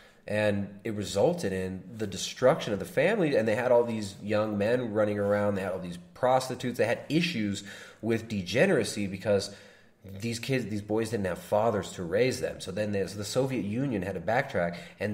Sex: male